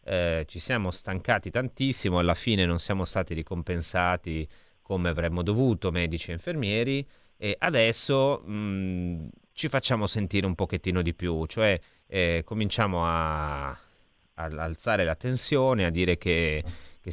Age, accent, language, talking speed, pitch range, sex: 30-49, native, Italian, 135 wpm, 90-110 Hz, male